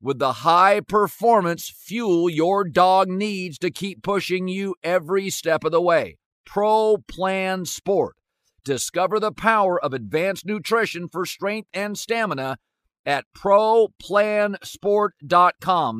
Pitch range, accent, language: 115-170 Hz, American, English